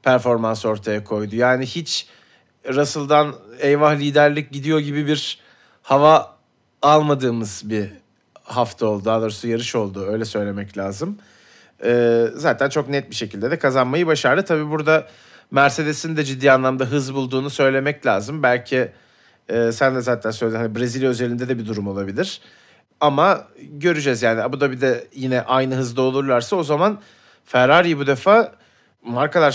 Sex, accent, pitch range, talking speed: male, native, 115-150 Hz, 145 wpm